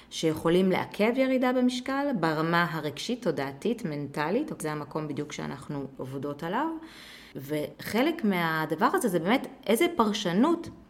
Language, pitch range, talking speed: Hebrew, 160-225 Hz, 115 wpm